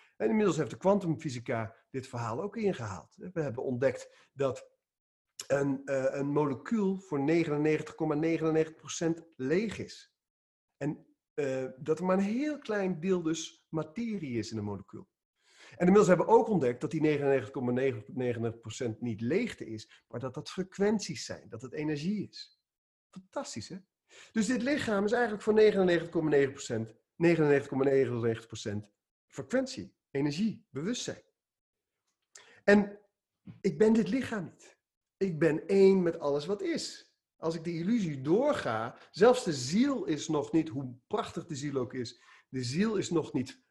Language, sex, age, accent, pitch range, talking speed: Dutch, male, 50-69, Dutch, 125-195 Hz, 145 wpm